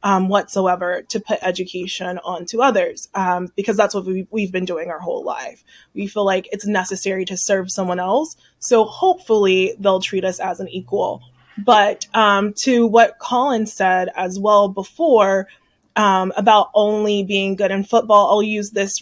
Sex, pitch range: female, 190-220 Hz